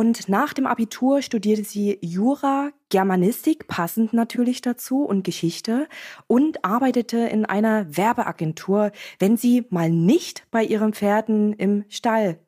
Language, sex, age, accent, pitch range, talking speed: German, female, 20-39, German, 185-235 Hz, 130 wpm